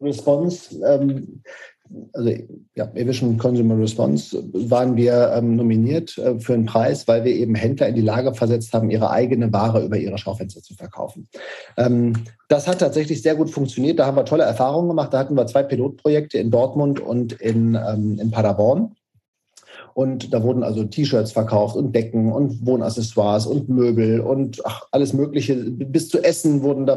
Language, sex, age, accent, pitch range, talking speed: German, male, 40-59, German, 115-140 Hz, 170 wpm